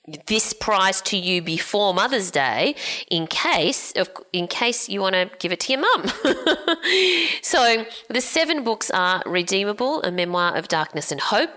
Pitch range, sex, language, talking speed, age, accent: 165-240 Hz, female, English, 165 wpm, 30-49, Australian